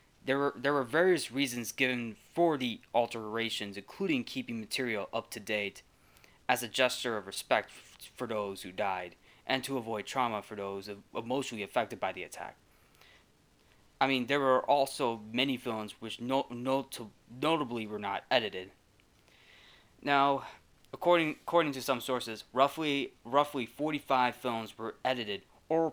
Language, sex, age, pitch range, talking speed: English, male, 20-39, 110-135 Hz, 145 wpm